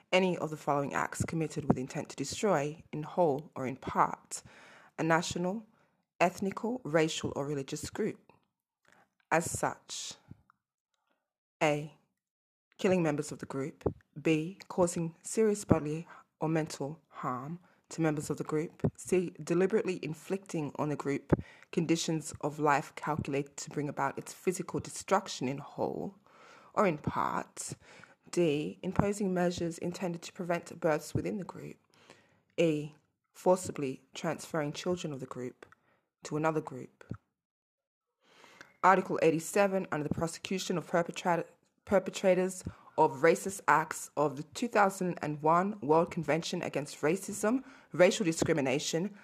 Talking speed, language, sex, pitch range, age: 125 wpm, English, female, 150-185 Hz, 20-39